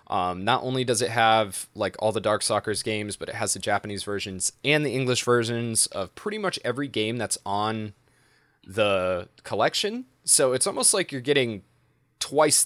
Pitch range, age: 95-125 Hz, 20-39